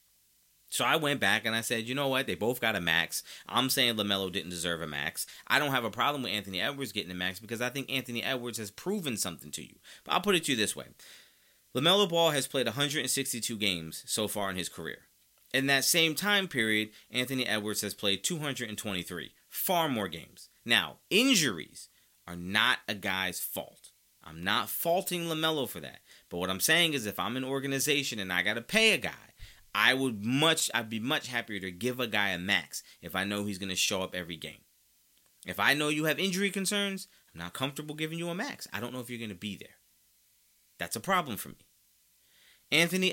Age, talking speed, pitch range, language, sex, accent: 30-49, 215 wpm, 95-135 Hz, English, male, American